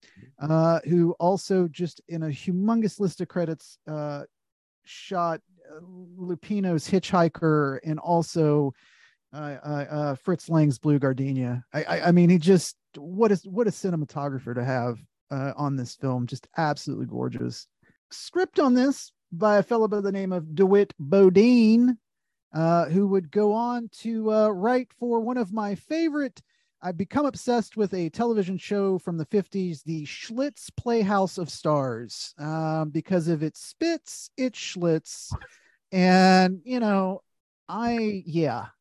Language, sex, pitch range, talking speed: English, male, 155-215 Hz, 145 wpm